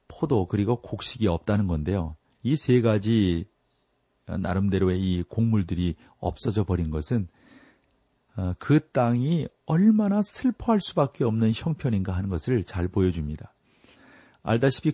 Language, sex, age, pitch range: Korean, male, 40-59, 95-125 Hz